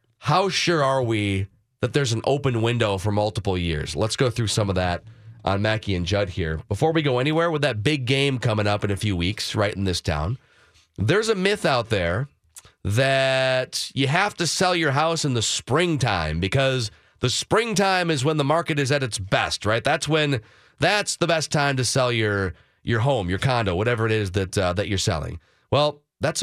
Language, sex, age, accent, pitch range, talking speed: English, male, 30-49, American, 105-145 Hz, 205 wpm